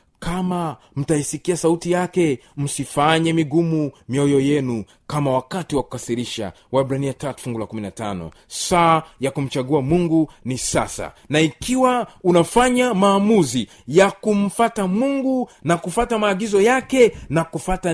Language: Swahili